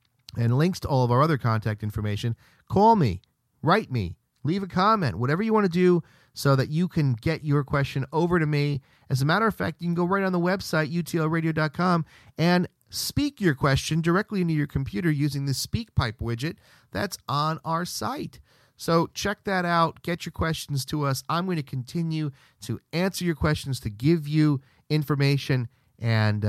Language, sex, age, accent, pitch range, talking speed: English, male, 40-59, American, 115-155 Hz, 185 wpm